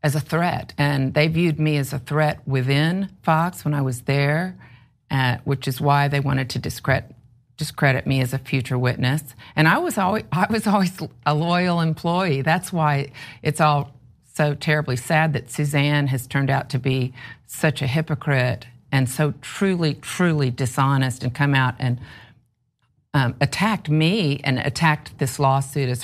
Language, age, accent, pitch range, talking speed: English, 50-69, American, 130-155 Hz, 165 wpm